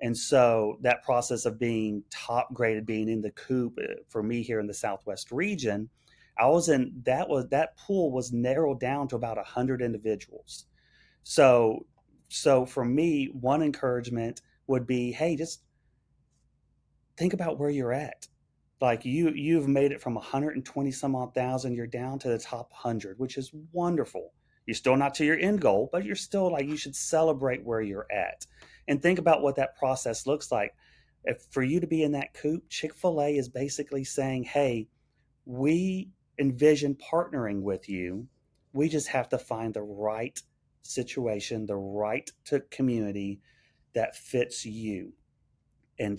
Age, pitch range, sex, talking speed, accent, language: 30-49, 115-140 Hz, male, 165 wpm, American, English